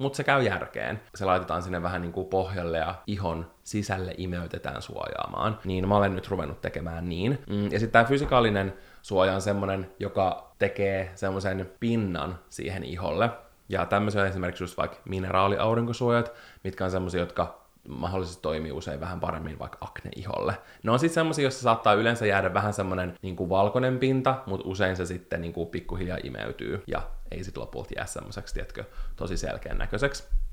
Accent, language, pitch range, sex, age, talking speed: native, Finnish, 95-120 Hz, male, 20-39, 160 wpm